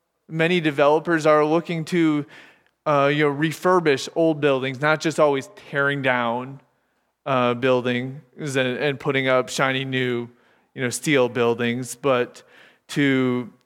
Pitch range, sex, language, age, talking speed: 135-175 Hz, male, English, 30-49, 125 wpm